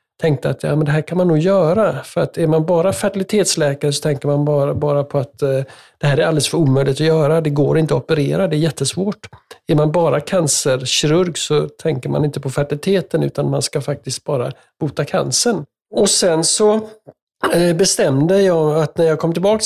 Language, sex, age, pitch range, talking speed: Swedish, male, 60-79, 135-165 Hz, 200 wpm